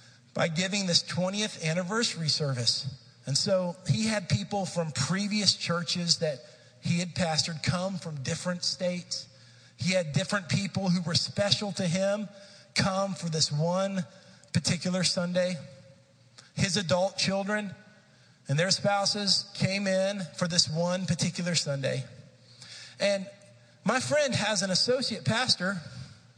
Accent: American